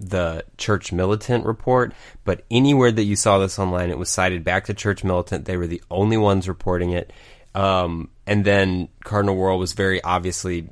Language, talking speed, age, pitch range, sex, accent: English, 185 wpm, 30-49, 90-110 Hz, male, American